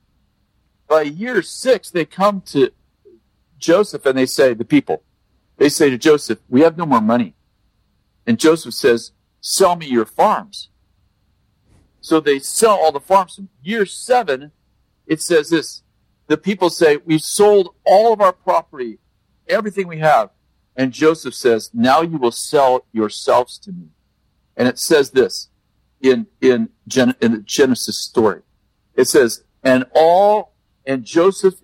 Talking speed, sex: 145 wpm, male